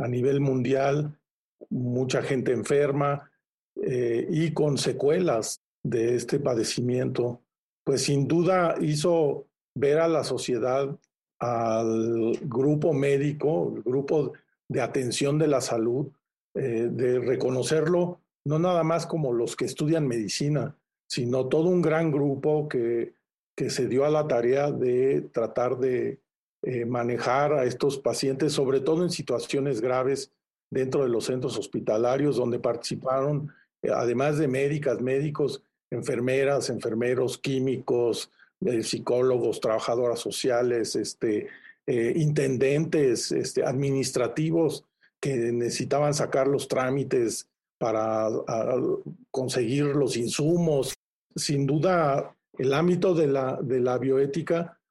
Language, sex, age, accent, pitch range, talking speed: Spanish, male, 50-69, Mexican, 125-155 Hz, 120 wpm